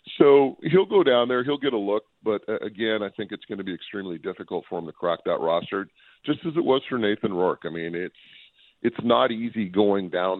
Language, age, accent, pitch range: English, 40-59, American, 95-130 Hz